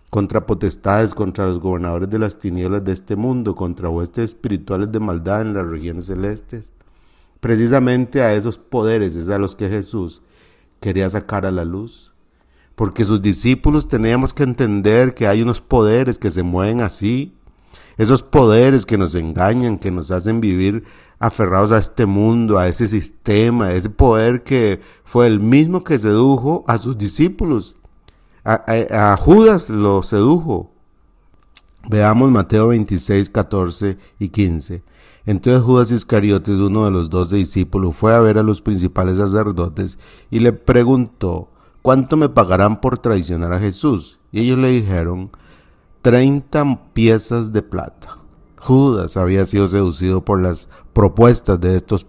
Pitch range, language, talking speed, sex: 95-115 Hz, Spanish, 150 wpm, male